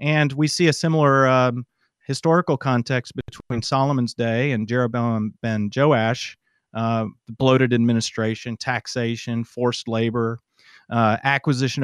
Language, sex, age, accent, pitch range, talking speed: English, male, 40-59, American, 115-150 Hz, 115 wpm